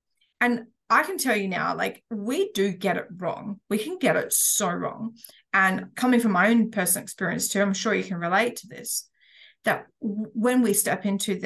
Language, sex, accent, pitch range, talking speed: English, female, Australian, 195-235 Hz, 200 wpm